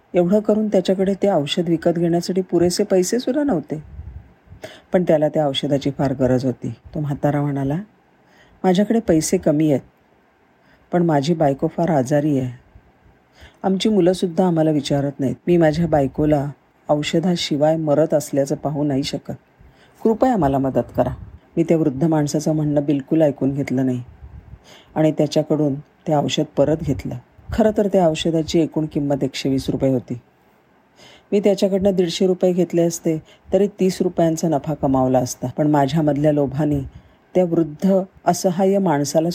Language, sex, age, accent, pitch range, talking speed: Marathi, female, 40-59, native, 140-175 Hz, 120 wpm